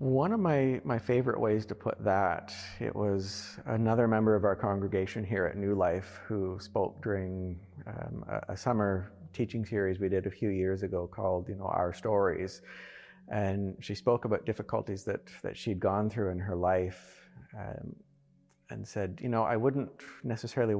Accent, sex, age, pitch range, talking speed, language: American, male, 40-59, 95-115 Hz, 175 wpm, English